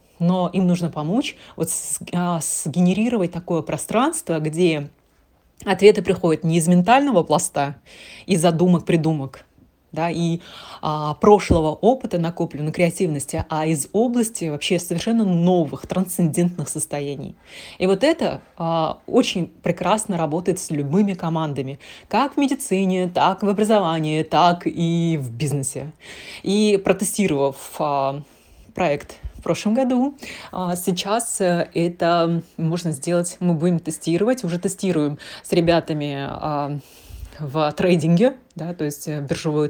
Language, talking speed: Russian, 120 wpm